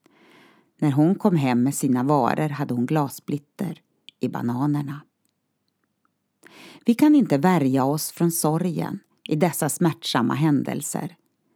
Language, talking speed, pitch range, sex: Swedish, 120 wpm, 140-215 Hz, female